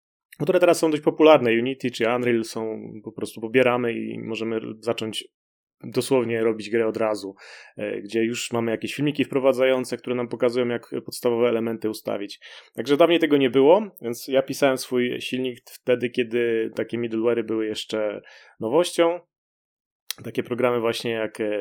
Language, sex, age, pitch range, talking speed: Polish, male, 30-49, 115-140 Hz, 150 wpm